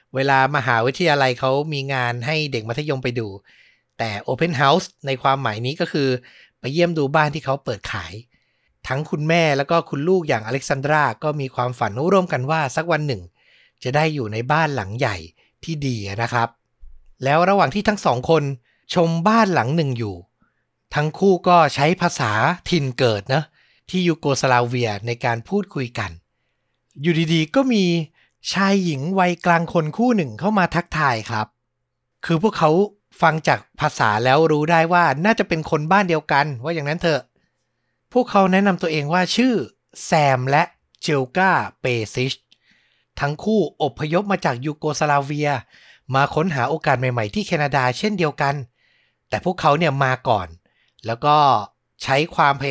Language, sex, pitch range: Thai, male, 125-170 Hz